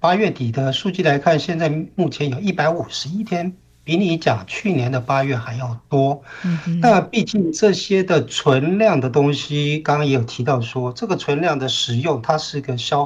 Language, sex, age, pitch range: Chinese, male, 60-79, 130-170 Hz